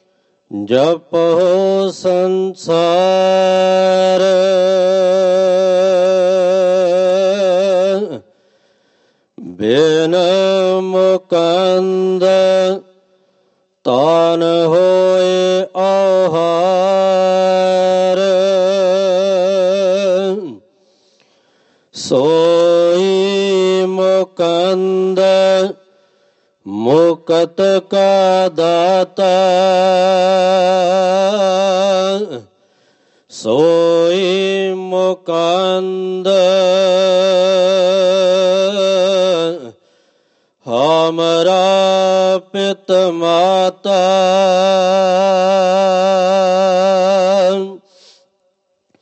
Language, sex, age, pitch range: Punjabi, male, 40-59, 185-190 Hz